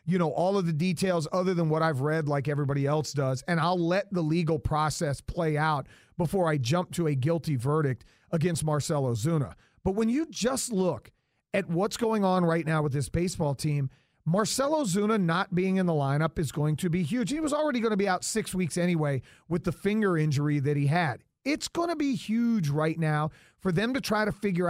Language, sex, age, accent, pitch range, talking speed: English, male, 40-59, American, 150-195 Hz, 220 wpm